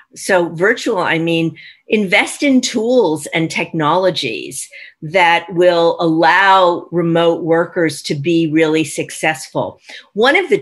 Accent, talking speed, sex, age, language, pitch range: American, 120 wpm, female, 50-69, English, 170-225 Hz